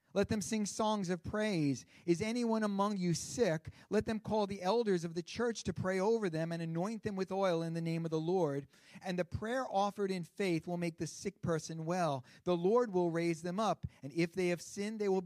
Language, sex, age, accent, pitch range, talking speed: English, male, 40-59, American, 145-190 Hz, 230 wpm